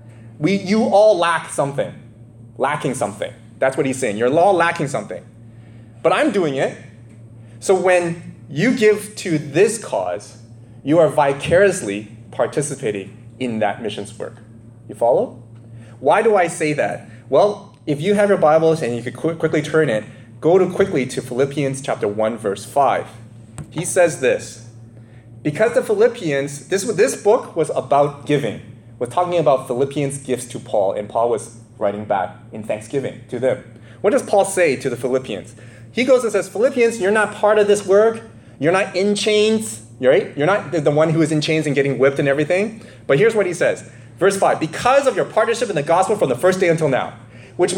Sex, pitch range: male, 115-185 Hz